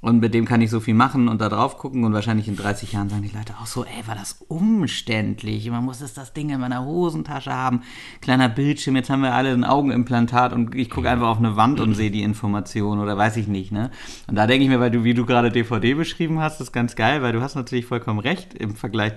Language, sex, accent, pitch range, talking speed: German, male, German, 115-145 Hz, 260 wpm